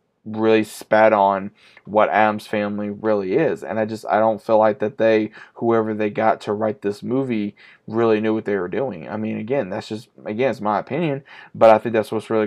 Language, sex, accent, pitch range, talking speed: English, male, American, 110-135 Hz, 215 wpm